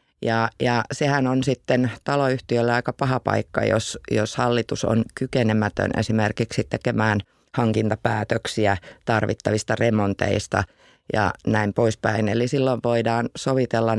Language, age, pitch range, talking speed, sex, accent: Finnish, 30-49, 110-125 Hz, 110 wpm, female, native